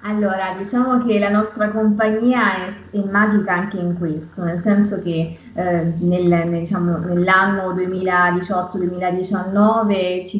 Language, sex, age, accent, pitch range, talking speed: Italian, female, 20-39, native, 170-205 Hz, 125 wpm